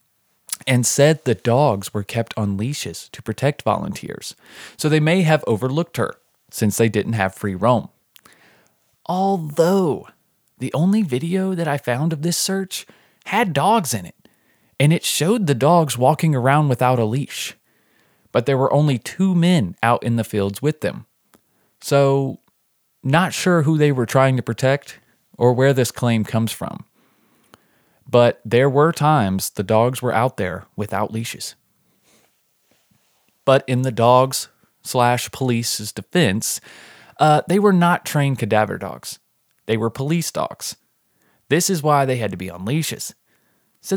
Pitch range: 110-155 Hz